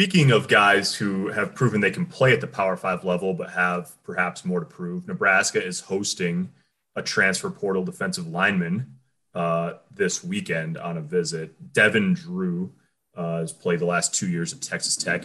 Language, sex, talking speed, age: English, male, 180 wpm, 30-49